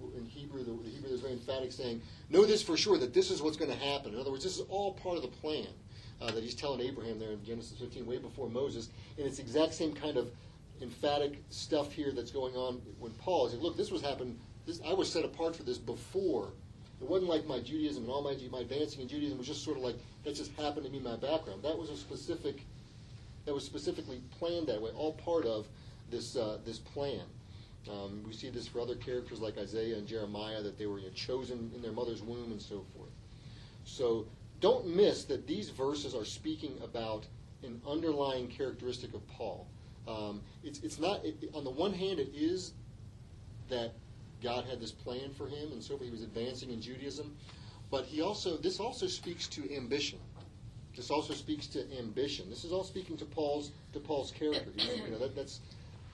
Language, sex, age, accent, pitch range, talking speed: English, male, 40-59, American, 115-145 Hz, 215 wpm